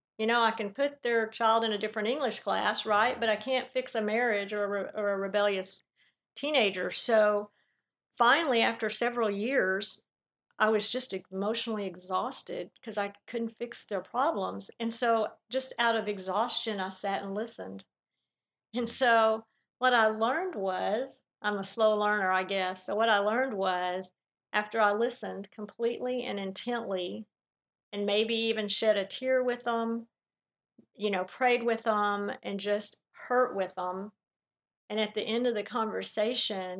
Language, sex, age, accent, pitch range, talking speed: English, female, 50-69, American, 205-240 Hz, 160 wpm